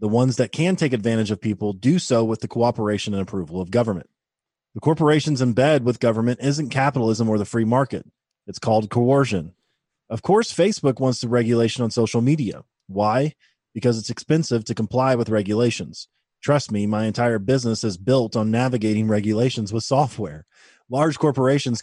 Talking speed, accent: 175 wpm, American